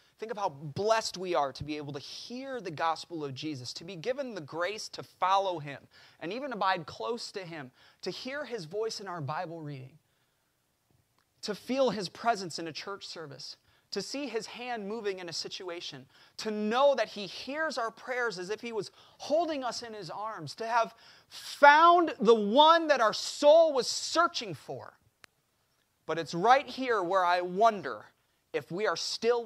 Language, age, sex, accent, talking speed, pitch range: English, 30-49, male, American, 185 wpm, 170-240 Hz